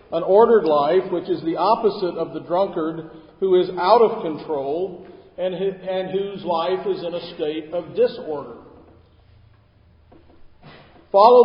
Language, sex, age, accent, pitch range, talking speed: English, male, 50-69, American, 155-185 Hz, 135 wpm